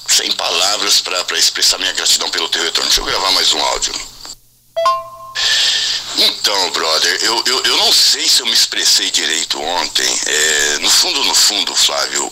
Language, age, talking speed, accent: Portuguese, 60-79, 165 wpm, Brazilian